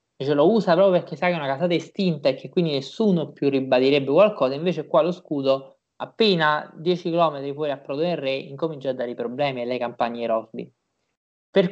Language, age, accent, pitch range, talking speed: Italian, 20-39, native, 140-185 Hz, 200 wpm